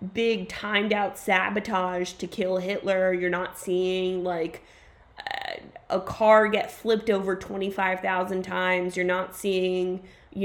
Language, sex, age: English, female, 20-39